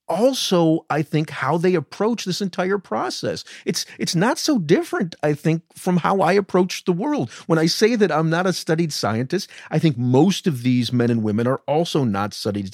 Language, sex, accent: English, male, American